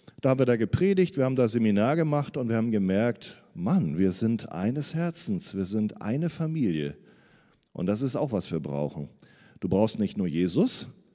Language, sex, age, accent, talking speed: German, male, 40-59, German, 190 wpm